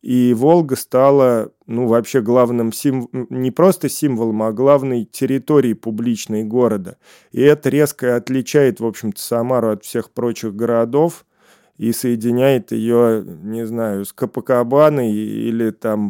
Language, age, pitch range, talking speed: Russian, 20-39, 110-125 Hz, 130 wpm